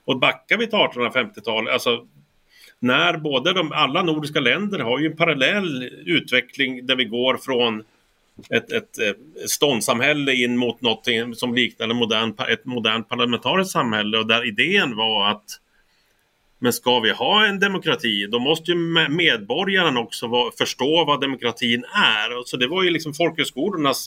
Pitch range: 125-160 Hz